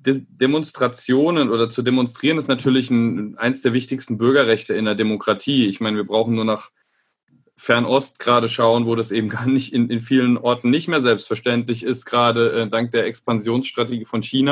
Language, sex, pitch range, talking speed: German, male, 115-140 Hz, 175 wpm